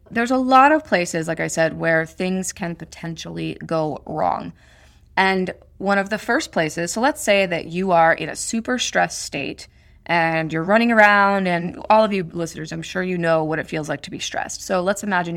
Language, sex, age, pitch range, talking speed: English, female, 20-39, 165-205 Hz, 210 wpm